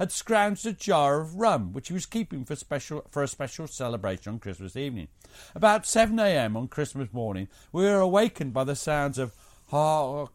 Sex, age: male, 50-69